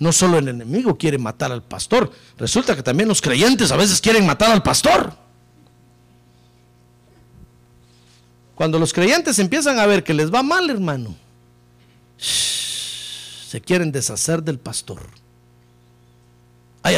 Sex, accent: male, Mexican